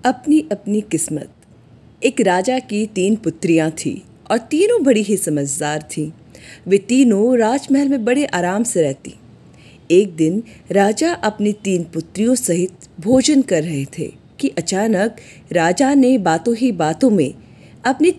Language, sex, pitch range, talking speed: Hindi, female, 170-260 Hz, 140 wpm